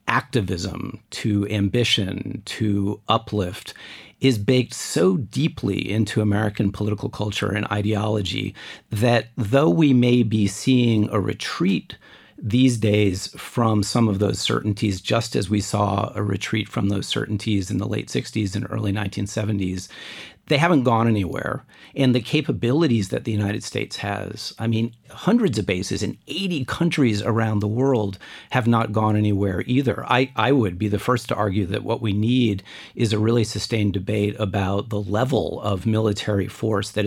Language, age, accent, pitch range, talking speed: English, 50-69, American, 100-115 Hz, 160 wpm